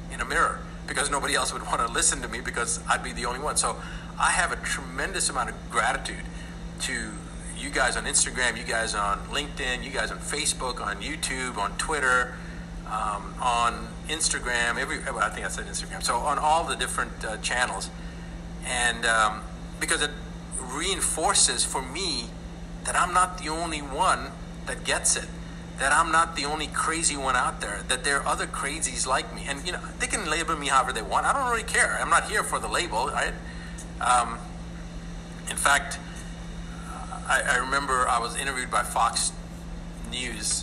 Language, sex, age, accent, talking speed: English, male, 50-69, American, 185 wpm